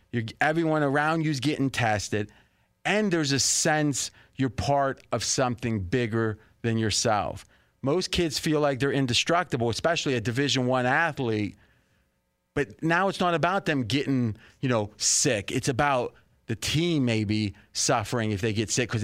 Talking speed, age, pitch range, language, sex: 155 wpm, 30-49, 115-145 Hz, English, male